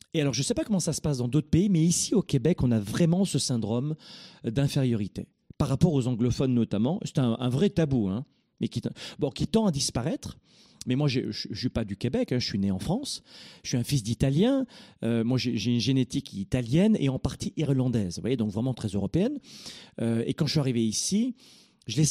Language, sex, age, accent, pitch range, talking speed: French, male, 40-59, French, 120-170 Hz, 235 wpm